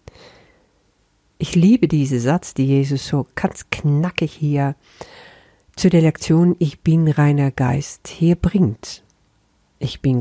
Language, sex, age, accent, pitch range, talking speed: German, female, 50-69, German, 140-180 Hz, 125 wpm